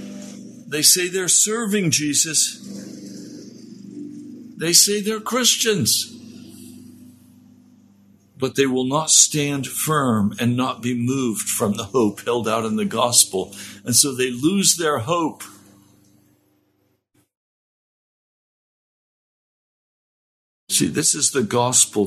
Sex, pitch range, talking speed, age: male, 100-145 Hz, 105 wpm, 60-79